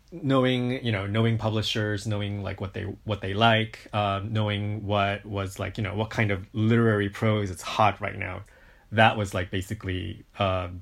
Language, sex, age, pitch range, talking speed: English, male, 20-39, 100-110 Hz, 185 wpm